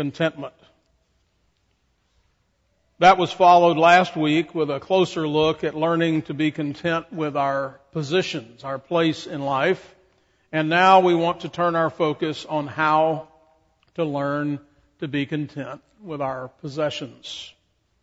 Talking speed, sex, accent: 135 wpm, male, American